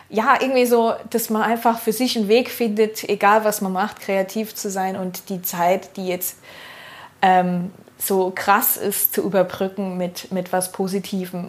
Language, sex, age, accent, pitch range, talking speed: German, female, 20-39, German, 185-235 Hz, 170 wpm